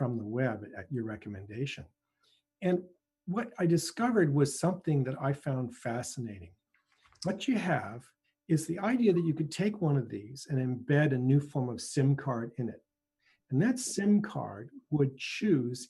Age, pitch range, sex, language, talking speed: 50-69, 125-165 Hz, male, English, 170 wpm